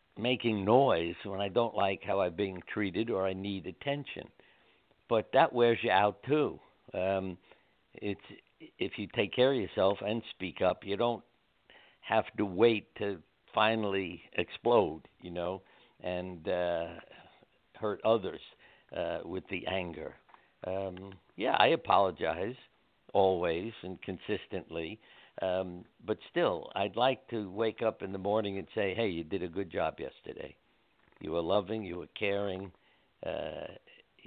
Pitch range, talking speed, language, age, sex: 95-110 Hz, 145 wpm, English, 60-79, male